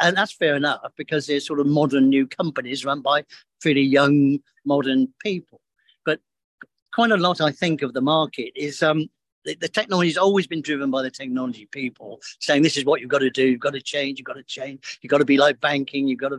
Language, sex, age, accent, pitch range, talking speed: English, male, 50-69, British, 140-180 Hz, 235 wpm